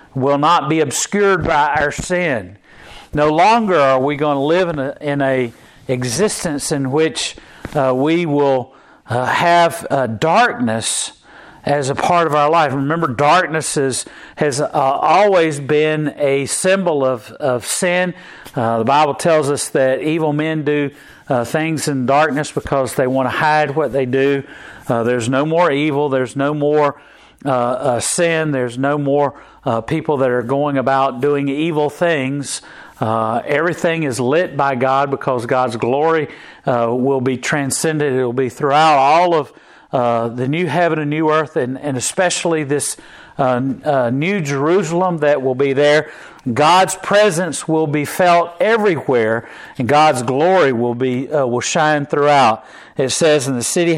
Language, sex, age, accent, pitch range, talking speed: English, male, 50-69, American, 130-160 Hz, 165 wpm